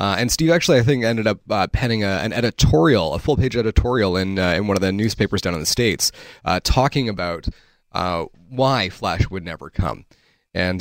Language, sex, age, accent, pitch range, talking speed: English, male, 30-49, American, 95-125 Hz, 205 wpm